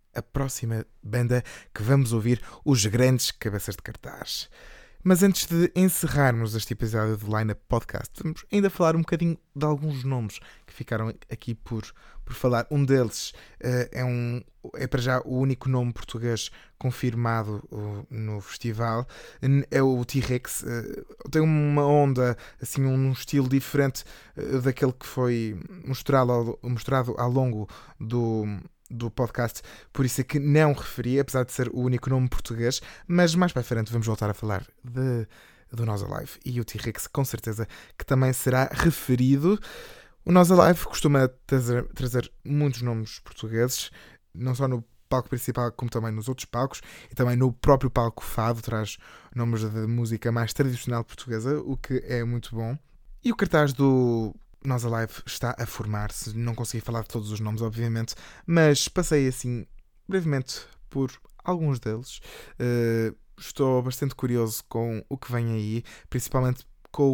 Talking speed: 160 wpm